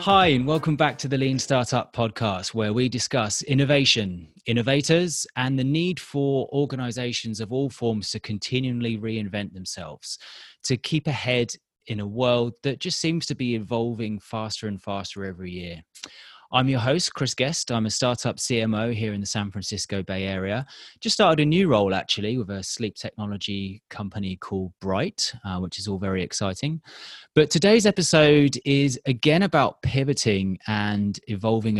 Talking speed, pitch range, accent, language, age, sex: 165 wpm, 100-135 Hz, British, English, 30-49, male